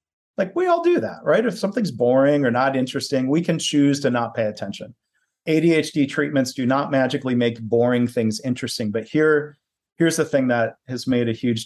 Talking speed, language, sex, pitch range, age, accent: 195 wpm, English, male, 115-140 Hz, 40-59, American